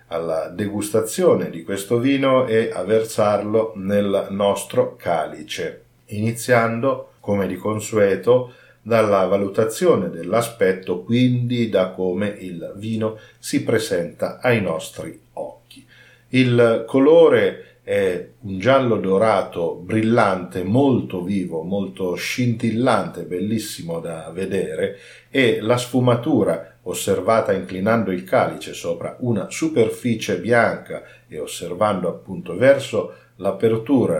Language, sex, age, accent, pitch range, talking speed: Italian, male, 40-59, native, 95-120 Hz, 100 wpm